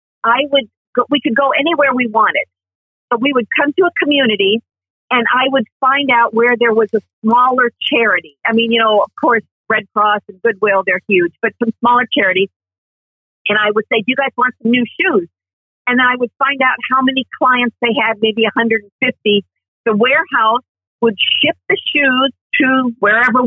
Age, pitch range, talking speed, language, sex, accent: 50-69, 205-255 Hz, 185 wpm, English, female, American